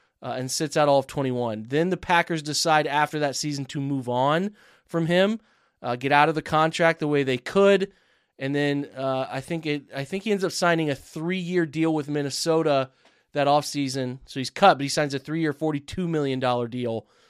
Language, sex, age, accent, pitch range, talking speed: English, male, 20-39, American, 135-165 Hz, 200 wpm